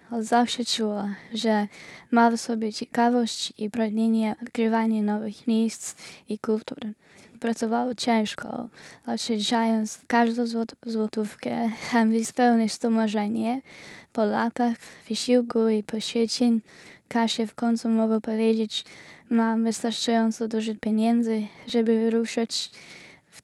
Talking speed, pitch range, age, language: 110 wpm, 220-235 Hz, 10-29, Polish